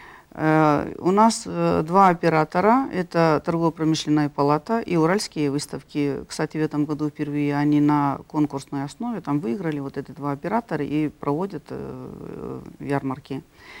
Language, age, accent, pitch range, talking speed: Russian, 40-59, native, 150-185 Hz, 125 wpm